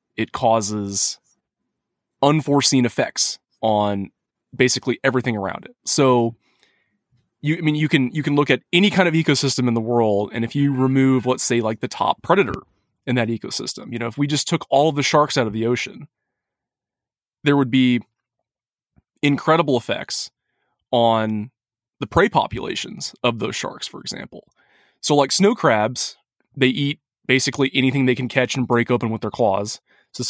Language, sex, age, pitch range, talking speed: English, male, 20-39, 115-145 Hz, 165 wpm